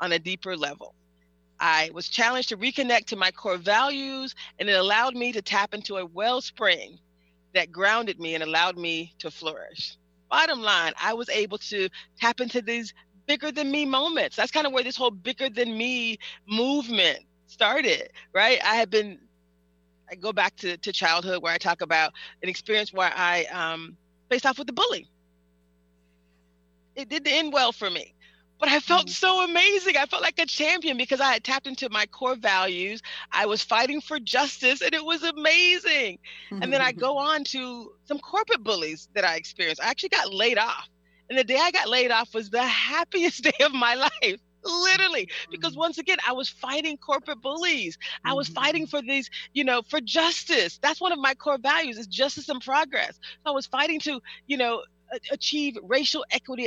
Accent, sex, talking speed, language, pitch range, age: American, female, 190 wpm, English, 185-290 Hz, 40-59